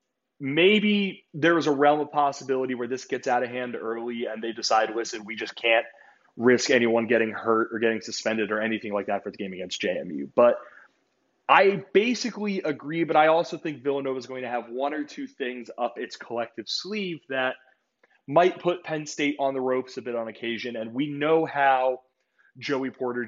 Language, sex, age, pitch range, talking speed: English, male, 20-39, 120-160 Hz, 195 wpm